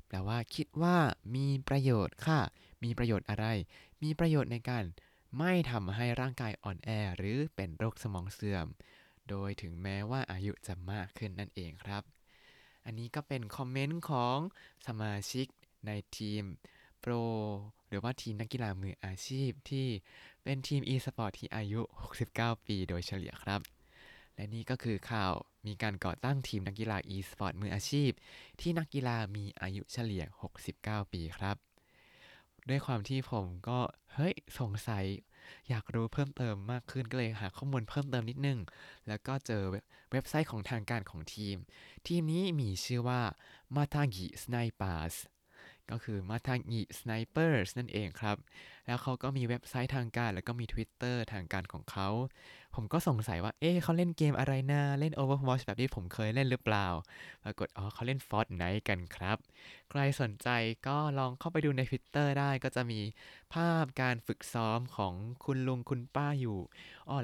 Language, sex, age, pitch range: Thai, male, 20-39, 100-130 Hz